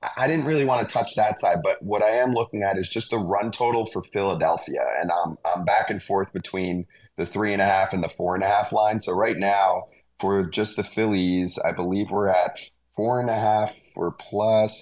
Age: 30-49